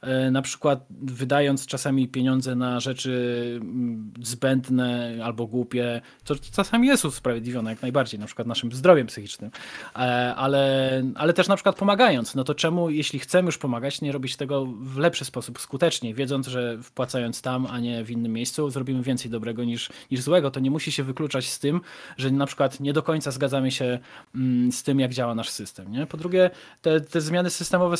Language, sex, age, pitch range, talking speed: Polish, male, 20-39, 125-145 Hz, 180 wpm